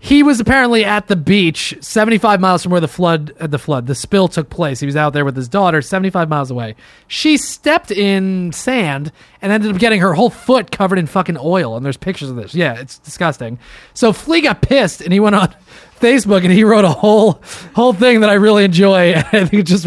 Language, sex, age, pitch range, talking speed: English, male, 30-49, 165-210 Hz, 225 wpm